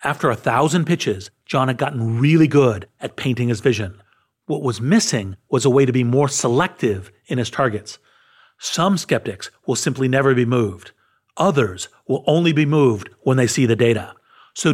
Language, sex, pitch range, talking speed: English, male, 115-145 Hz, 180 wpm